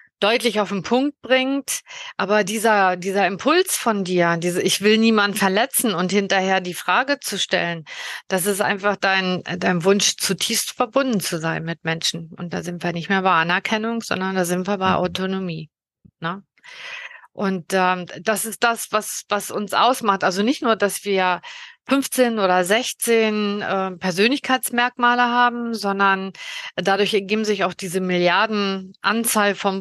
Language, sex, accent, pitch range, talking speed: German, female, German, 185-230 Hz, 155 wpm